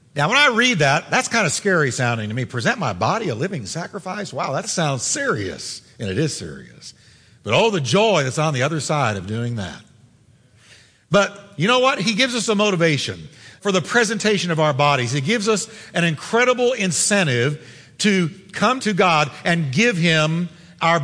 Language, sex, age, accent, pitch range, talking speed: English, male, 50-69, American, 145-210 Hz, 190 wpm